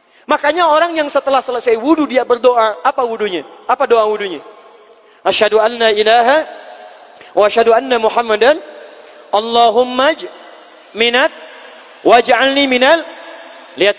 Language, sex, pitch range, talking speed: Indonesian, male, 225-295 Hz, 100 wpm